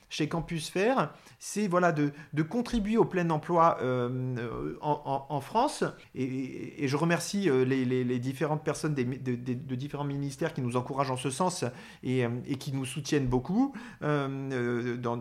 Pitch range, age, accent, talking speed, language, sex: 130-175 Hz, 40-59, French, 180 wpm, French, male